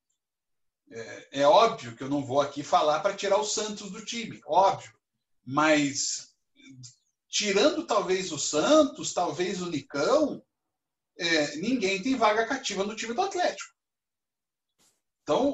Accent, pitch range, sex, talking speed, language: Brazilian, 160-265 Hz, male, 125 wpm, Portuguese